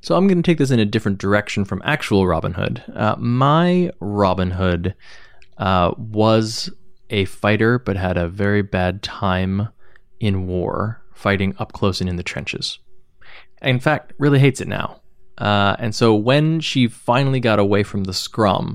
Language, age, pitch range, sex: English, 20-39, 100-130 Hz, male